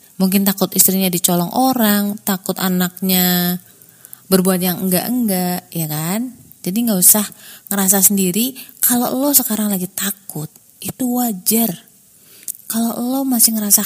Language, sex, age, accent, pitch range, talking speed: Indonesian, female, 20-39, native, 190-250 Hz, 120 wpm